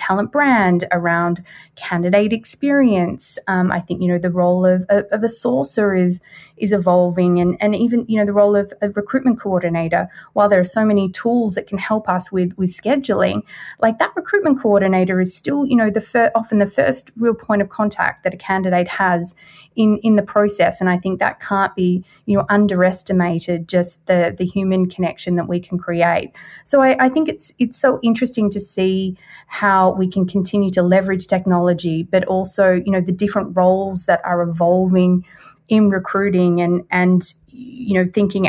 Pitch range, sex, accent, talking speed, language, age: 180-205 Hz, female, Australian, 190 wpm, English, 30-49